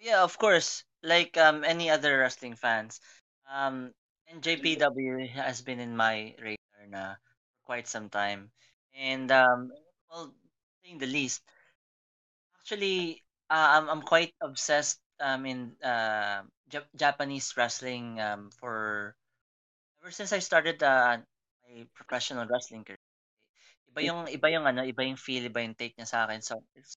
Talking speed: 145 wpm